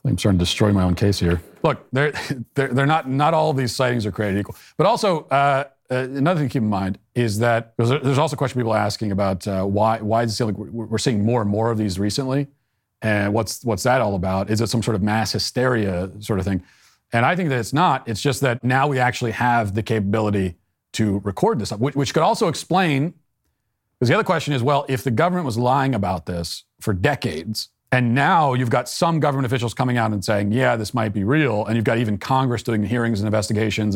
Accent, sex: American, male